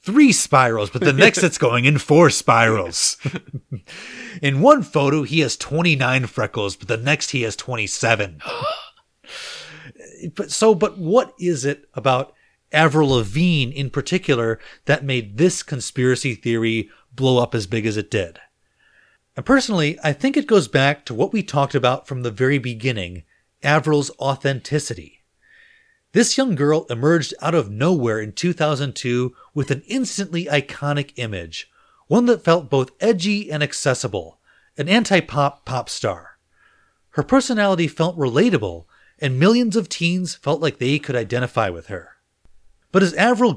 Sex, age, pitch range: male, 30-49, 125-180 Hz